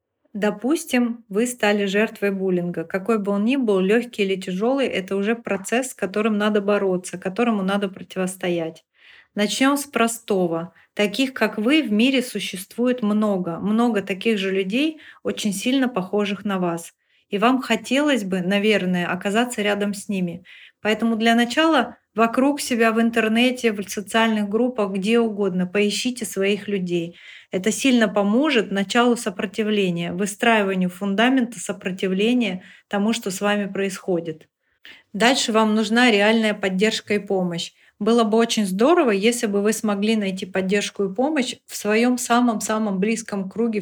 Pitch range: 195-230 Hz